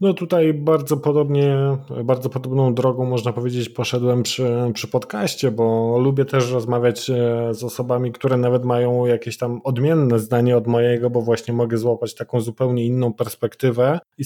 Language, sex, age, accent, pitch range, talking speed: Polish, male, 20-39, native, 110-130 Hz, 155 wpm